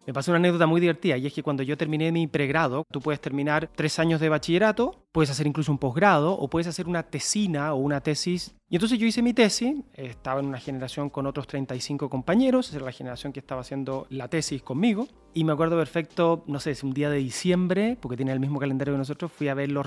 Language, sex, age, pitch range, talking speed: Spanish, male, 30-49, 135-170 Hz, 240 wpm